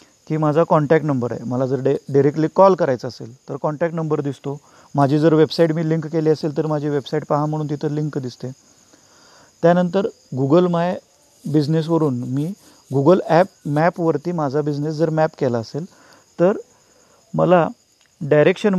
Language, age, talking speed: Marathi, 40-59, 140 wpm